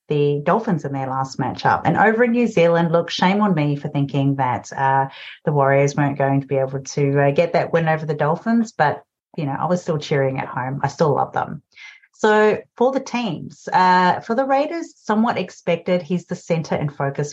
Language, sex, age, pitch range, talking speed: English, female, 30-49, 150-200 Hz, 215 wpm